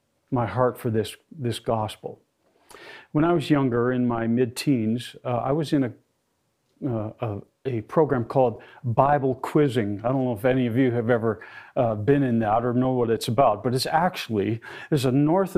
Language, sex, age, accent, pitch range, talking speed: English, male, 50-69, American, 125-165 Hz, 190 wpm